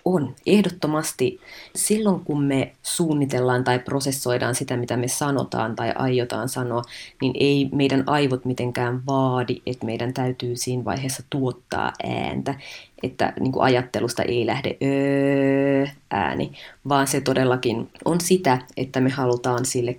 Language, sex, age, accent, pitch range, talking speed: Finnish, female, 30-49, native, 125-155 Hz, 130 wpm